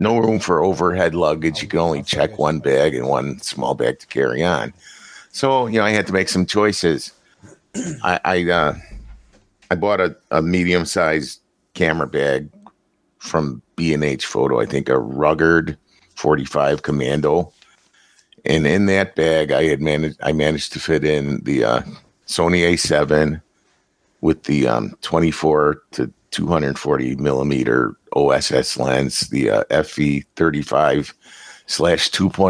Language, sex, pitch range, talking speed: English, male, 75-90 Hz, 150 wpm